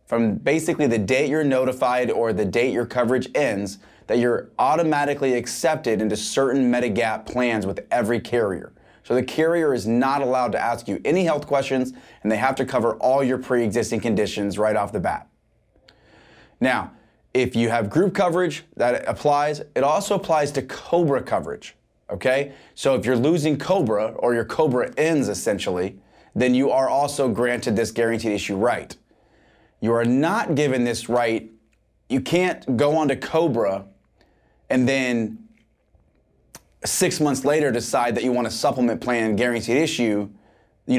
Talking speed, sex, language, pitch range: 160 wpm, male, English, 110-145 Hz